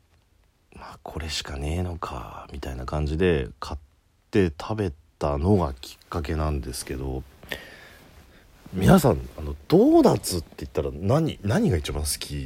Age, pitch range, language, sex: 40-59, 75-110 Hz, Japanese, male